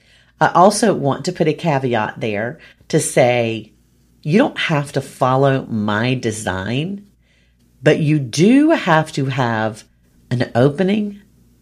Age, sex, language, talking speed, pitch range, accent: 40-59, female, English, 130 wpm, 120-185 Hz, American